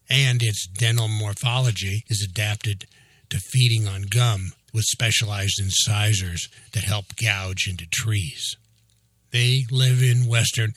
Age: 60-79